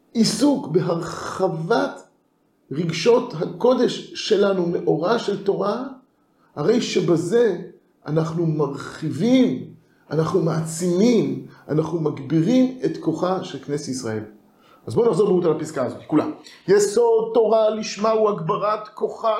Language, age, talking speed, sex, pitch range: Hebrew, 50-69, 110 wpm, male, 155-245 Hz